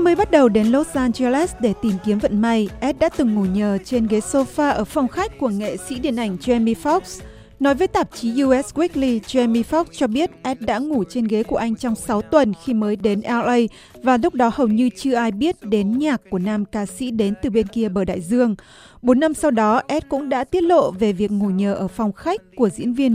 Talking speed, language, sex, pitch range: 240 wpm, Vietnamese, female, 215-280 Hz